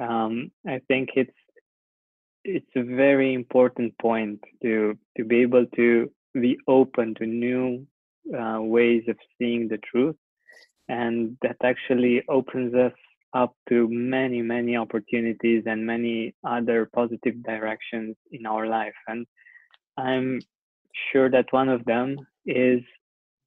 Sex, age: male, 20-39